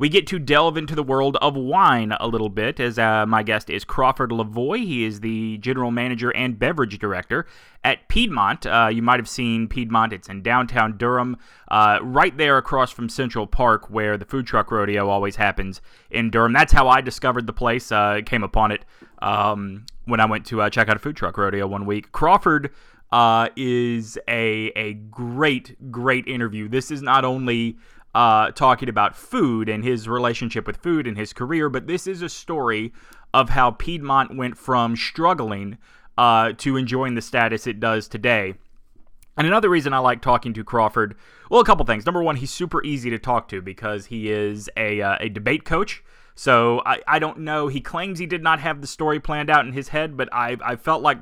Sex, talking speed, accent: male, 205 wpm, American